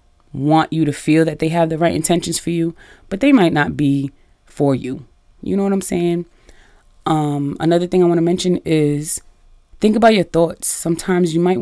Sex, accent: female, American